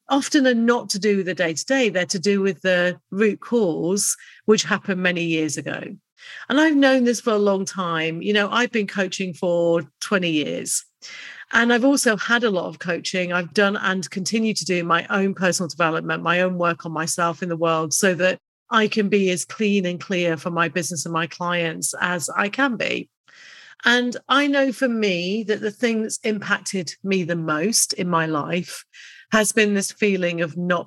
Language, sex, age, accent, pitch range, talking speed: English, female, 40-59, British, 175-220 Hz, 200 wpm